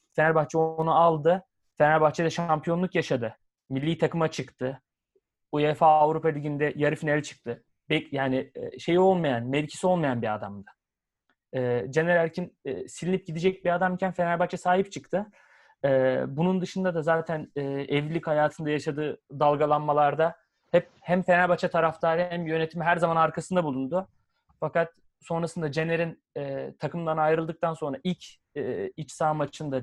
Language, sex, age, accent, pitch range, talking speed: Turkish, male, 30-49, native, 150-185 Hz, 125 wpm